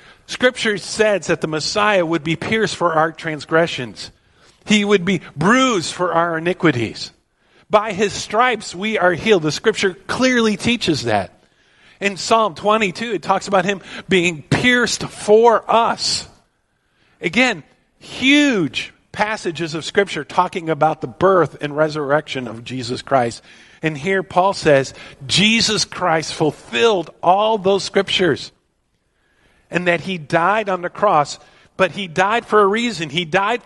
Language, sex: English, male